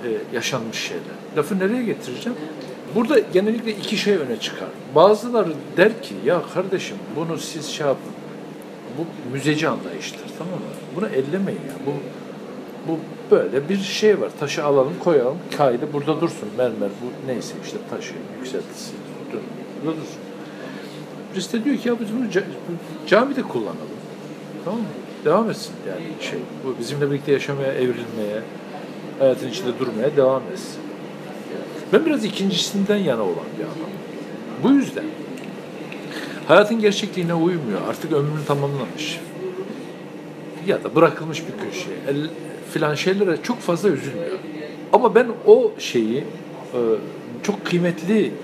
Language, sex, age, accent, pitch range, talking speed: Turkish, male, 60-79, native, 150-210 Hz, 130 wpm